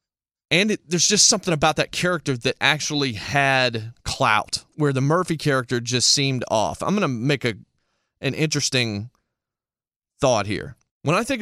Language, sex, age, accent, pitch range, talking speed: English, male, 30-49, American, 115-155 Hz, 165 wpm